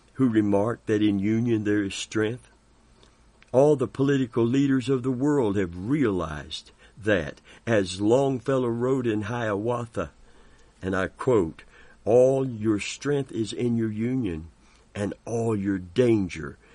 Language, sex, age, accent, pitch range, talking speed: English, male, 60-79, American, 110-135 Hz, 135 wpm